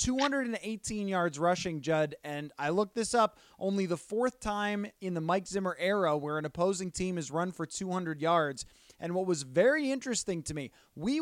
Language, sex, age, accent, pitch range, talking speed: English, male, 20-39, American, 175-235 Hz, 185 wpm